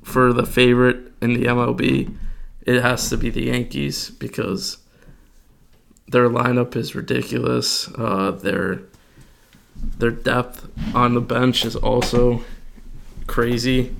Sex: male